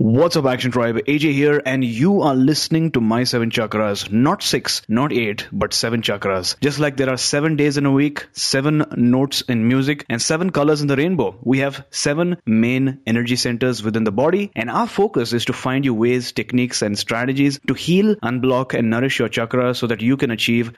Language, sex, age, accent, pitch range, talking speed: English, male, 30-49, Indian, 120-150 Hz, 210 wpm